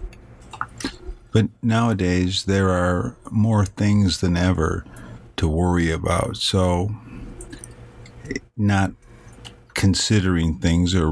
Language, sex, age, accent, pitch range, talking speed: English, male, 50-69, American, 85-115 Hz, 85 wpm